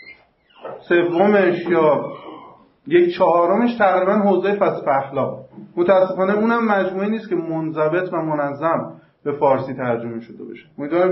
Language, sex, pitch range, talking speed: Persian, male, 155-220 Hz, 125 wpm